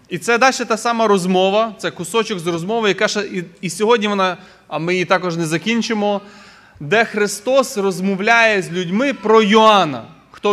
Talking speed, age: 170 wpm, 20-39